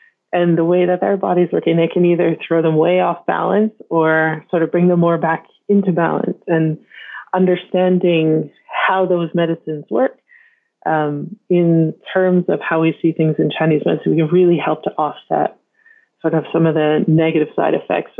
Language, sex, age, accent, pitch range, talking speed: English, female, 30-49, American, 160-185 Hz, 185 wpm